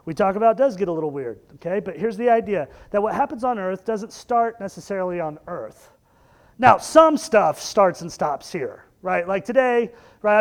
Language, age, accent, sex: English, 40-59, American, male